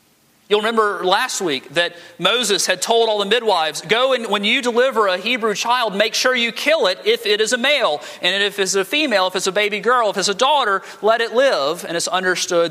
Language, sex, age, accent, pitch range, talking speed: English, male, 40-59, American, 140-230 Hz, 230 wpm